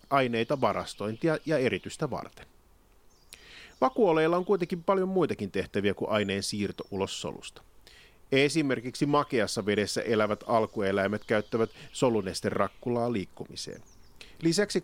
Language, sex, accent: Finnish, male, native